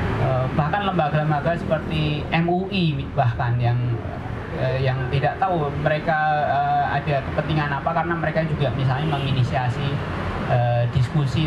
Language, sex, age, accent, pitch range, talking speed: Indonesian, male, 20-39, native, 120-155 Hz, 100 wpm